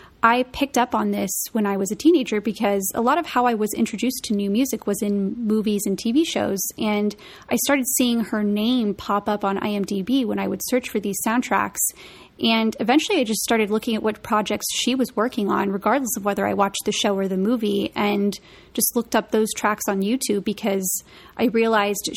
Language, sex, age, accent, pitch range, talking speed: English, female, 30-49, American, 200-235 Hz, 210 wpm